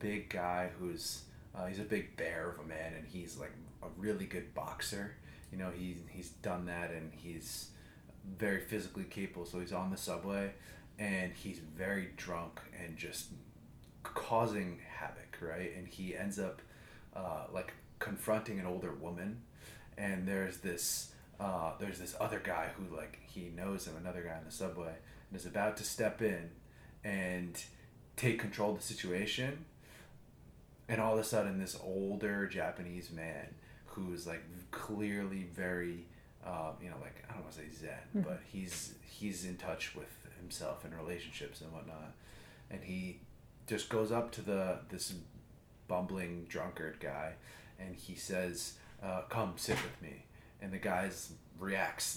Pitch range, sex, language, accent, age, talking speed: 85-105 Hz, male, English, American, 30-49, 160 wpm